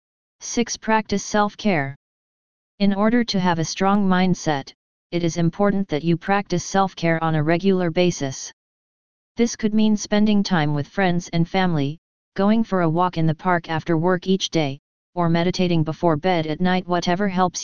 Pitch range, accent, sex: 165-195 Hz, American, female